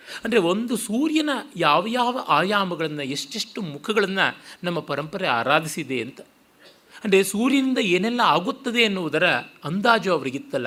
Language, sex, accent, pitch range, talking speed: Kannada, male, native, 150-215 Hz, 105 wpm